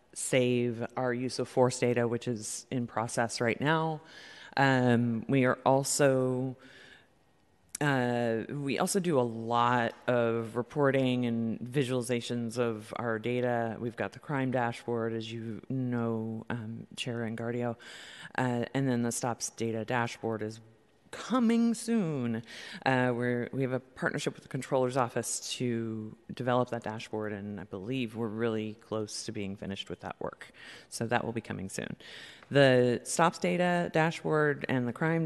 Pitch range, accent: 115-135 Hz, American